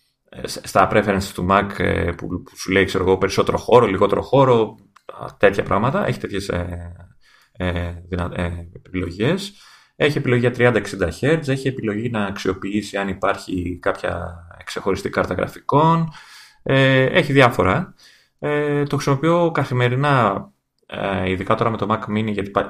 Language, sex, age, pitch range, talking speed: Greek, male, 30-49, 95-125 Hz, 130 wpm